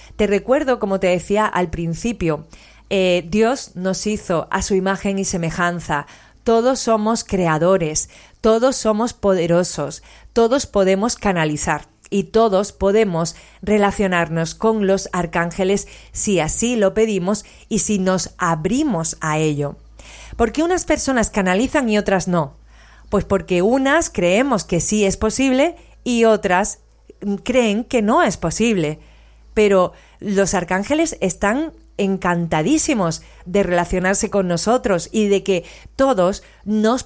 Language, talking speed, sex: Spanish, 130 wpm, female